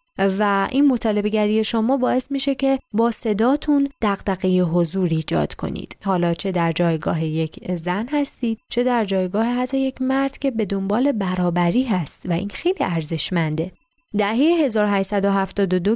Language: Persian